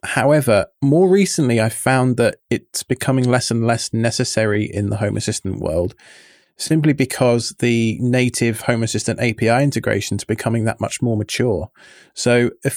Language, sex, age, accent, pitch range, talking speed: English, male, 20-39, British, 110-130 Hz, 150 wpm